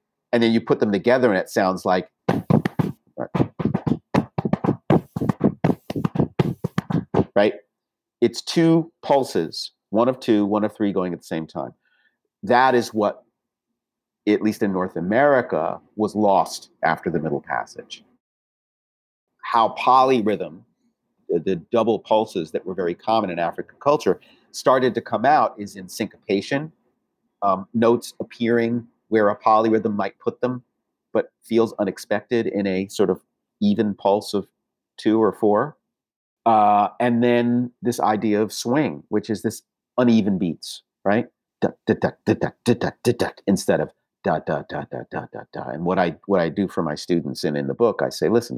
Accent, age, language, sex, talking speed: American, 50-69, English, male, 150 wpm